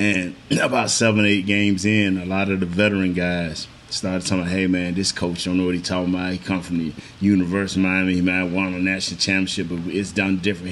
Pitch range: 95-120 Hz